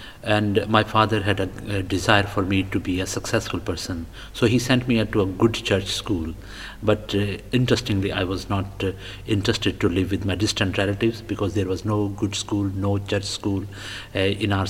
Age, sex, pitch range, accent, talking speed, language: 50-69, male, 95-110 Hz, Indian, 200 wpm, English